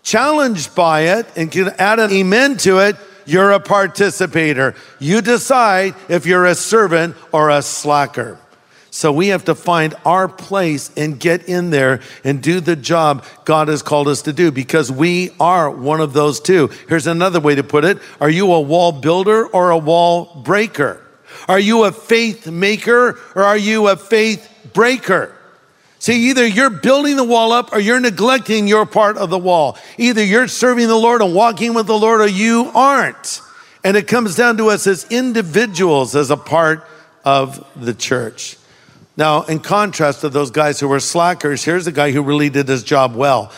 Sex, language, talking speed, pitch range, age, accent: male, English, 185 wpm, 155-220 Hz, 50-69, American